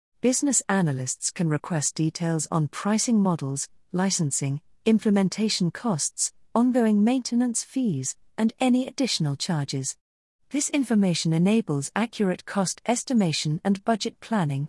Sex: female